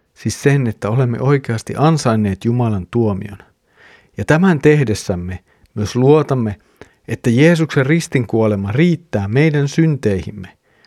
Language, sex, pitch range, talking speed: Finnish, male, 110-145 Hz, 105 wpm